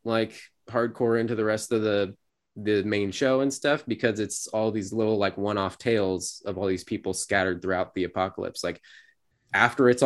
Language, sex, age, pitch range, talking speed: English, male, 20-39, 95-120 Hz, 190 wpm